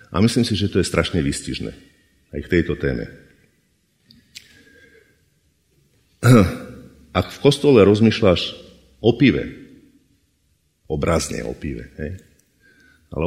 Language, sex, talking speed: Slovak, male, 105 wpm